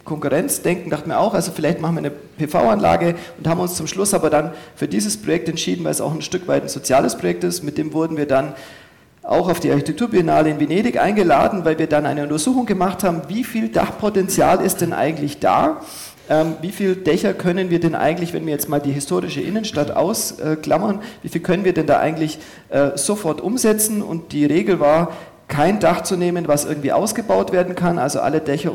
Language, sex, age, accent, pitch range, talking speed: German, male, 40-59, German, 150-185 Hz, 200 wpm